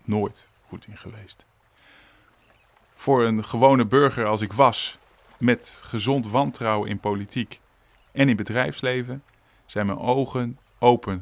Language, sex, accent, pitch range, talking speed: Dutch, male, Dutch, 95-125 Hz, 125 wpm